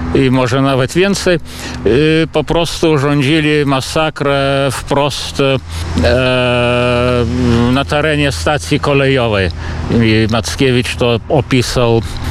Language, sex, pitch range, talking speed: Polish, male, 115-155 Hz, 85 wpm